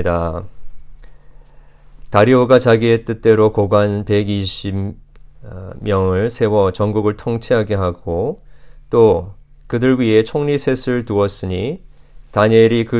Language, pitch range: Korean, 95-115 Hz